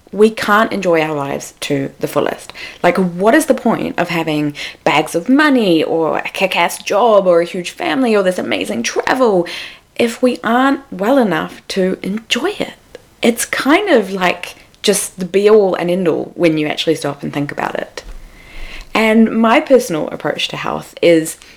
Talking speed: 175 wpm